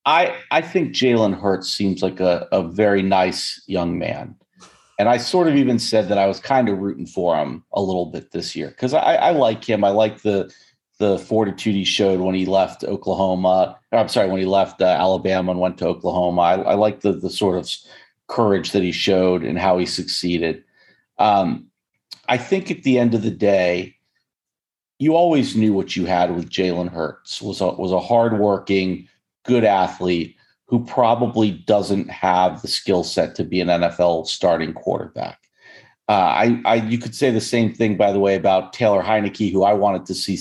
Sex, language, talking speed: male, English, 195 wpm